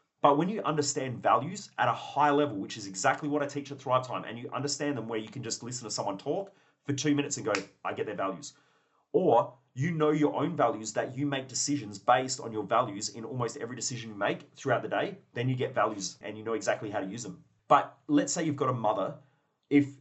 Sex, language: male, English